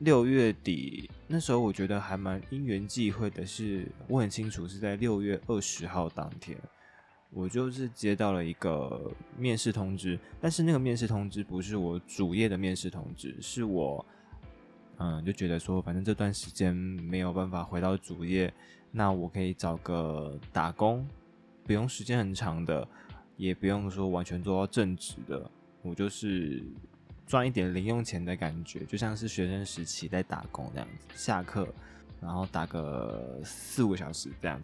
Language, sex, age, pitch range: Chinese, male, 20-39, 90-105 Hz